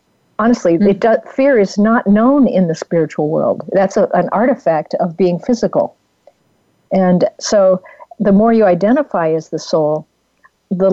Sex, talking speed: female, 135 wpm